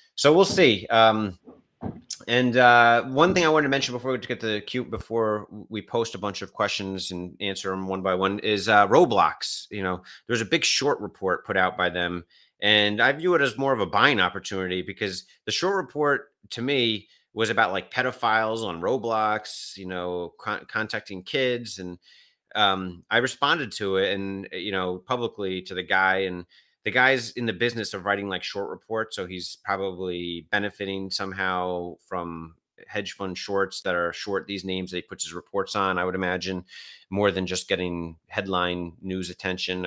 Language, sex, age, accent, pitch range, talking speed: English, male, 30-49, American, 90-110 Hz, 190 wpm